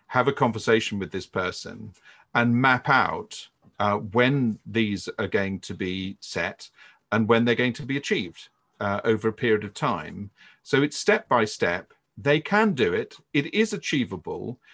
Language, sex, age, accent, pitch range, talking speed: English, male, 50-69, British, 105-140 Hz, 165 wpm